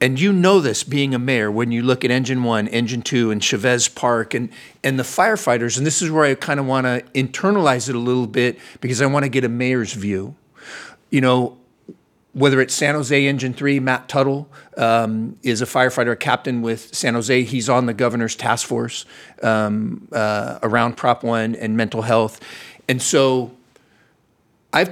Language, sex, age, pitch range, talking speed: English, male, 50-69, 115-140 Hz, 190 wpm